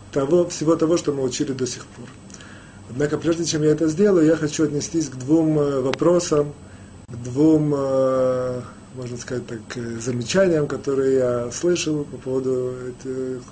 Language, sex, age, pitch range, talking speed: Russian, male, 30-49, 120-165 Hz, 140 wpm